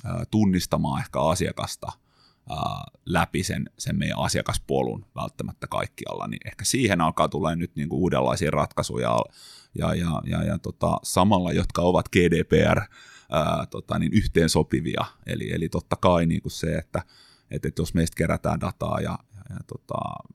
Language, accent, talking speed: Finnish, native, 140 wpm